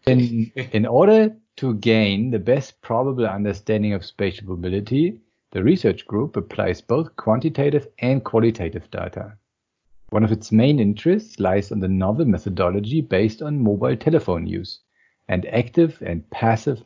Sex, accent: male, German